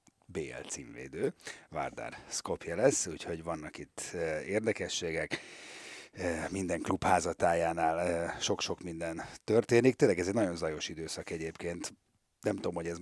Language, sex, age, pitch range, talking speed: Hungarian, male, 30-49, 85-100 Hz, 130 wpm